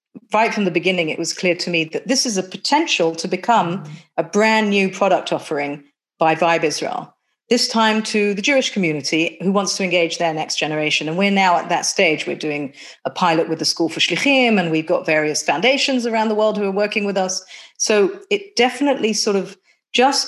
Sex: female